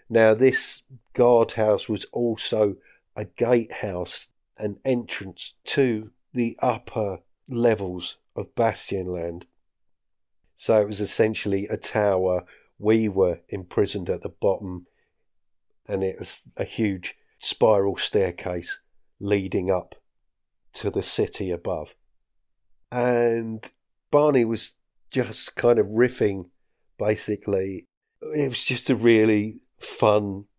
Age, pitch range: 40-59, 95-115 Hz